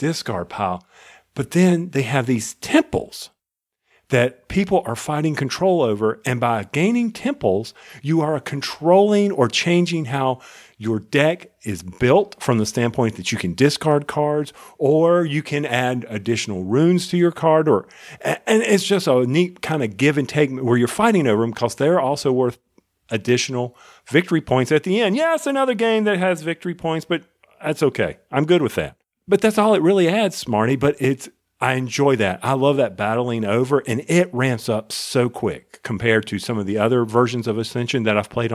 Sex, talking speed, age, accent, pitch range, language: male, 185 wpm, 40-59, American, 115-155 Hz, English